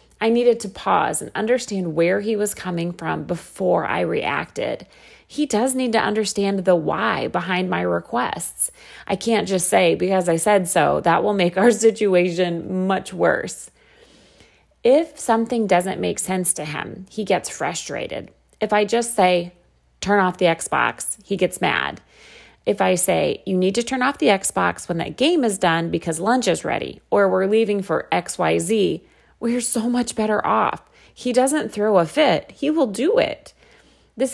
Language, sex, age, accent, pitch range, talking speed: English, female, 30-49, American, 180-235 Hz, 175 wpm